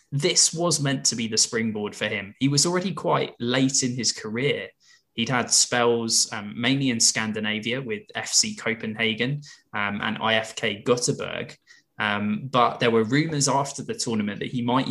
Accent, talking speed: British, 165 wpm